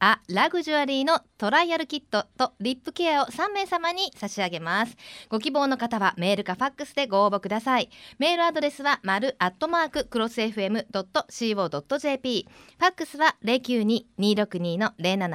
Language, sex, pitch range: Japanese, female, 205-295 Hz